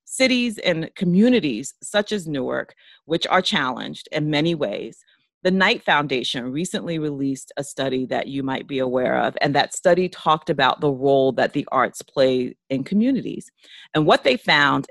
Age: 40-59